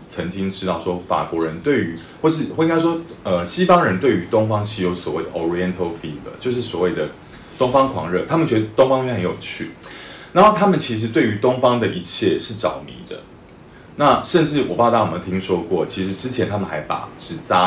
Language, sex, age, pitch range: Chinese, male, 30-49, 90-120 Hz